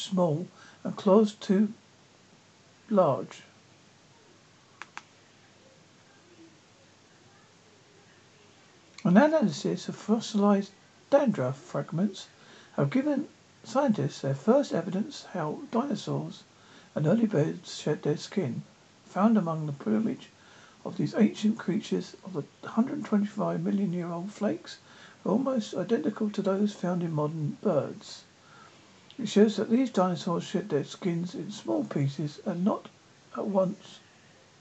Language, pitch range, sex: English, 170-215 Hz, male